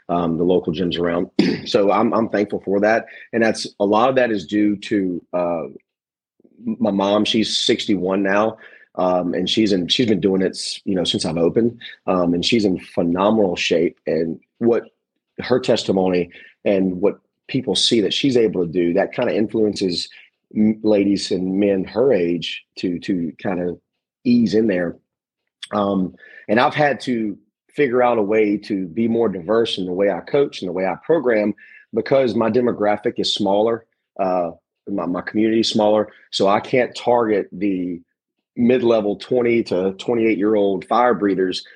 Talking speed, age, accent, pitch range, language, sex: 175 wpm, 30-49, American, 90-115 Hz, English, male